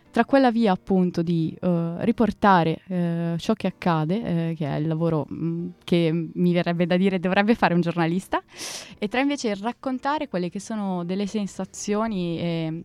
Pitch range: 170-205 Hz